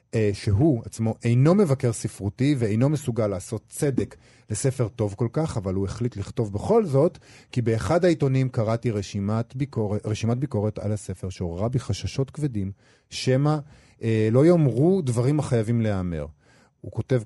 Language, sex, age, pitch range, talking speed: Hebrew, male, 40-59, 100-135 Hz, 150 wpm